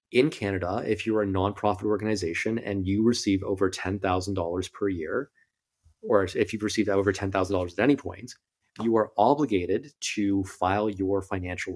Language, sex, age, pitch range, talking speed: English, male, 30-49, 95-110 Hz, 175 wpm